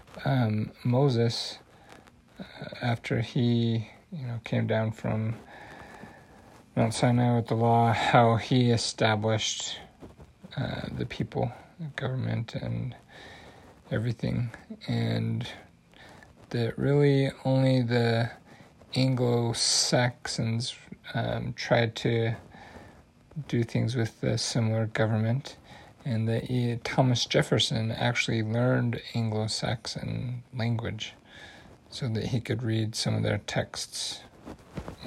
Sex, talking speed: male, 100 wpm